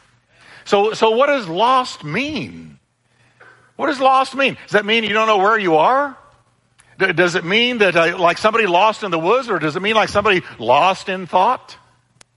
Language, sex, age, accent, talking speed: English, male, 50-69, American, 190 wpm